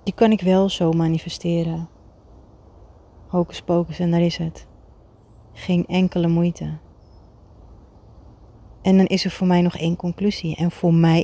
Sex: female